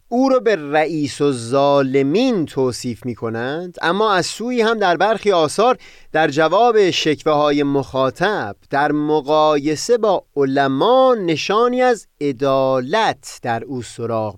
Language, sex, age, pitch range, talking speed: Persian, male, 30-49, 135-190 Hz, 130 wpm